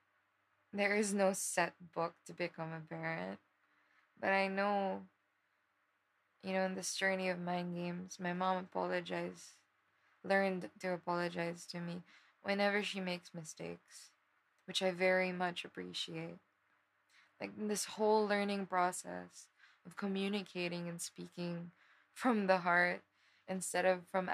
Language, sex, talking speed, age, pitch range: English, female, 130 wpm, 20-39, 170-195 Hz